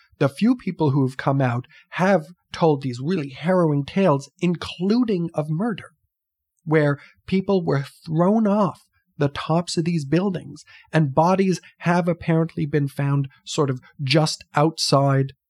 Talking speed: 140 wpm